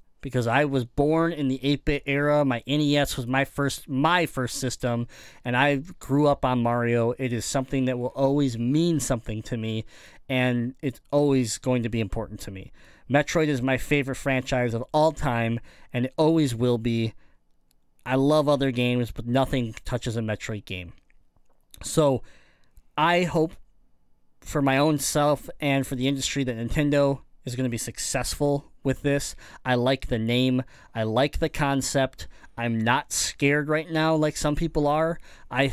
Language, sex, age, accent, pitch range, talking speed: English, male, 20-39, American, 120-150 Hz, 170 wpm